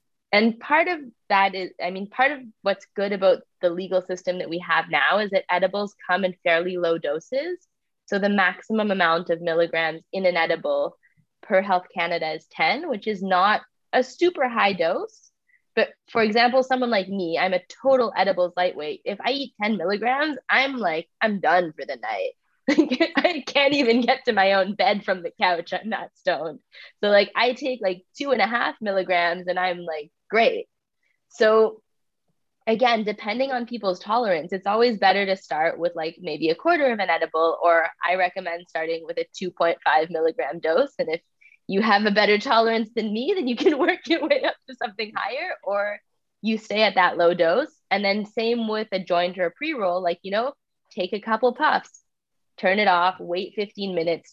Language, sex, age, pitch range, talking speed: English, female, 20-39, 180-250 Hz, 195 wpm